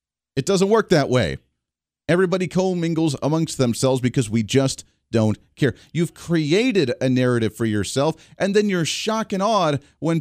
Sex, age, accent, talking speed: male, 40-59, American, 160 wpm